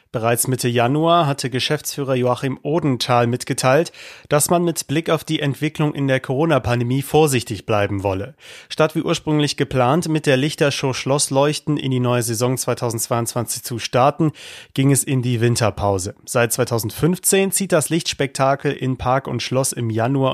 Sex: male